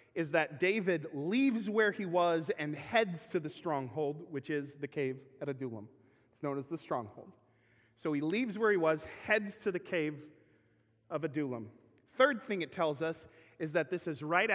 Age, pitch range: 30-49, 135-170 Hz